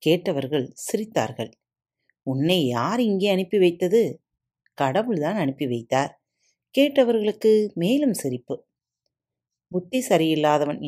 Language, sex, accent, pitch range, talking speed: Tamil, female, native, 135-210 Hz, 85 wpm